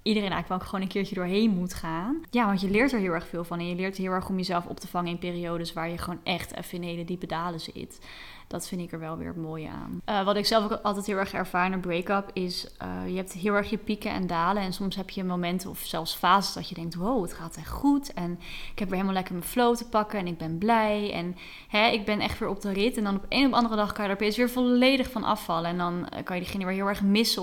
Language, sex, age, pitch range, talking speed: Dutch, female, 20-39, 180-215 Hz, 285 wpm